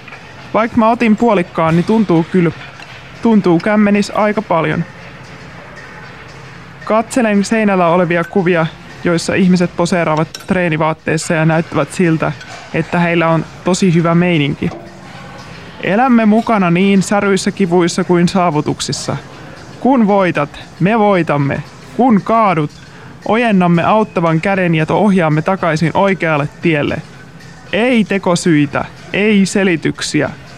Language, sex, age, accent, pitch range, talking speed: Finnish, male, 20-39, native, 155-195 Hz, 100 wpm